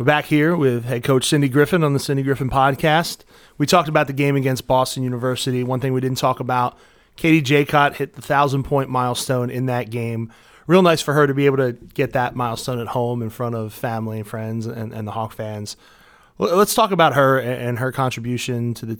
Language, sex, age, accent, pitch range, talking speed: English, male, 20-39, American, 115-135 Hz, 225 wpm